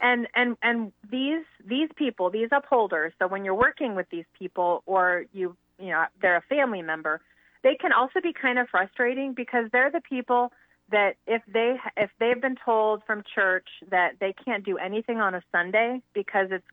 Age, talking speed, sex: 30-49, 190 wpm, female